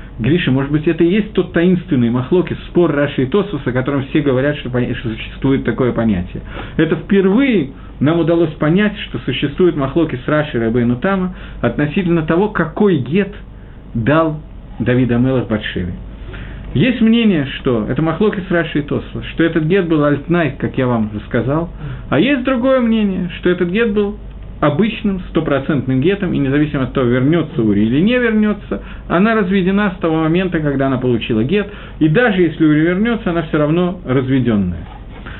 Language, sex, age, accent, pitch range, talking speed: Russian, male, 50-69, native, 130-190 Hz, 165 wpm